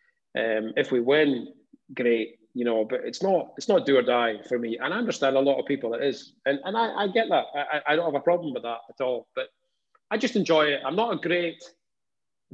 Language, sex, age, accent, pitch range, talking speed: English, male, 30-49, British, 125-155 Hz, 250 wpm